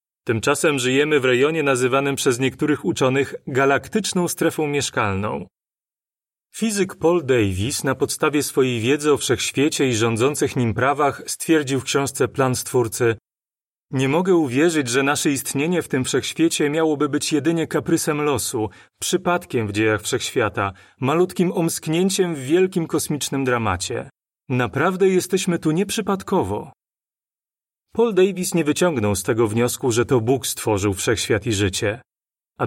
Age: 30-49